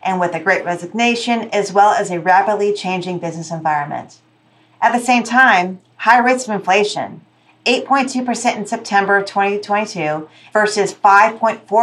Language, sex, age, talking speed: English, female, 40-59, 130 wpm